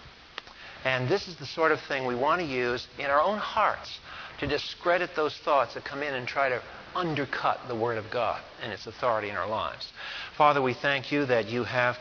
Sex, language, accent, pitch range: male, English, American, 125-150 Hz